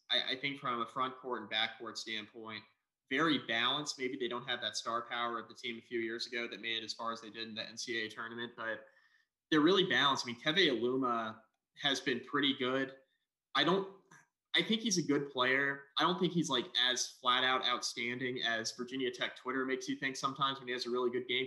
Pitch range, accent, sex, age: 120-145 Hz, American, male, 20-39